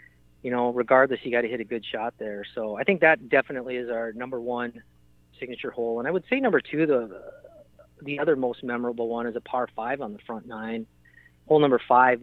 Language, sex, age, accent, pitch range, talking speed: English, male, 30-49, American, 105-125 Hz, 220 wpm